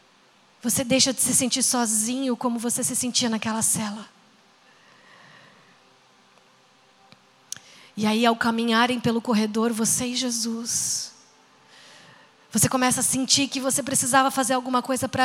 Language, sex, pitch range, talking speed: Portuguese, female, 225-280 Hz, 125 wpm